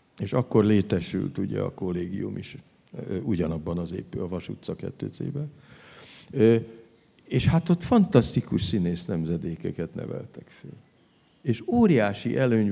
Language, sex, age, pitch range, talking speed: Hungarian, male, 50-69, 95-130 Hz, 120 wpm